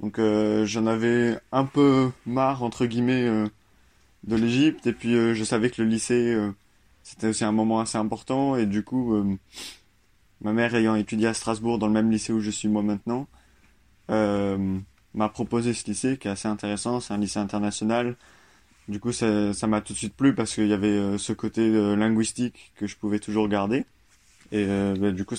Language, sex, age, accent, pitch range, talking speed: French, male, 20-39, French, 100-115 Hz, 205 wpm